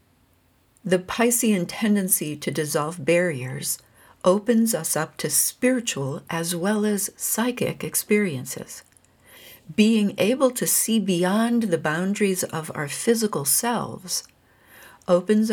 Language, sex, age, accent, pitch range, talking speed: English, female, 60-79, American, 160-215 Hz, 110 wpm